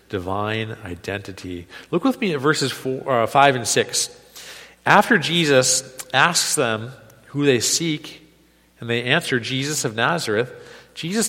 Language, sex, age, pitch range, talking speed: English, male, 40-59, 105-155 Hz, 140 wpm